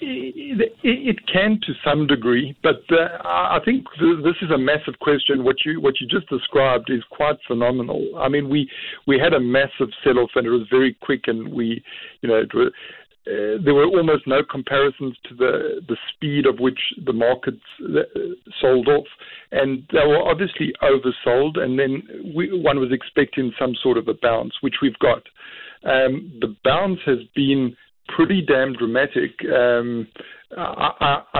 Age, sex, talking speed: 50-69, male, 170 wpm